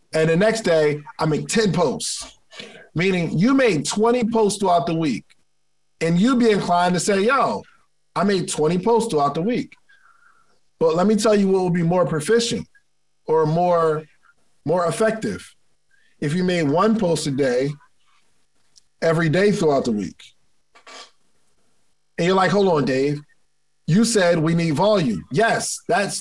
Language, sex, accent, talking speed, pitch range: English, male, American, 160 wpm, 165-230 Hz